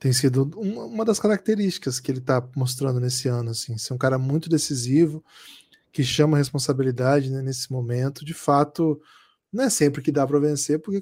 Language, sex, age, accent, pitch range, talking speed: Portuguese, male, 20-39, Brazilian, 130-160 Hz, 185 wpm